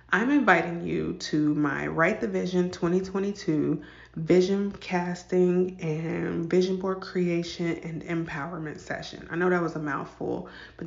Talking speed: 140 wpm